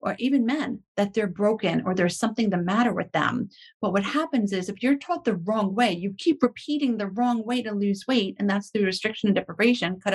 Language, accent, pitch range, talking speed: English, American, 190-240 Hz, 230 wpm